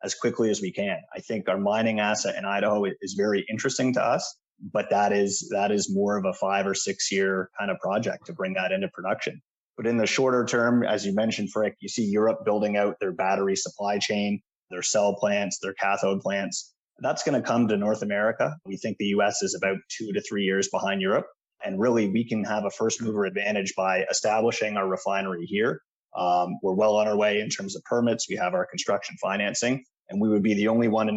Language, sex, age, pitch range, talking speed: English, male, 30-49, 100-110 Hz, 225 wpm